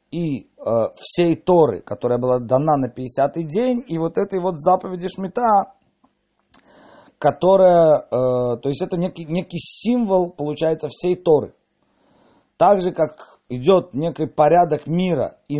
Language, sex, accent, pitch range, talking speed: Russian, male, native, 135-175 Hz, 135 wpm